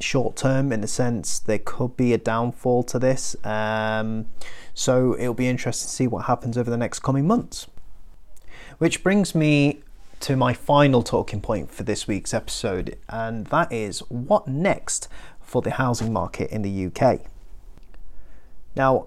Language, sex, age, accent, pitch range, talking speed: English, male, 30-49, British, 110-140 Hz, 160 wpm